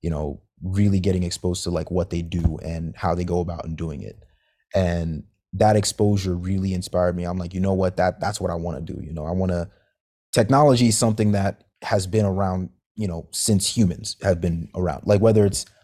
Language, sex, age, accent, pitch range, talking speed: English, male, 30-49, American, 85-100 Hz, 210 wpm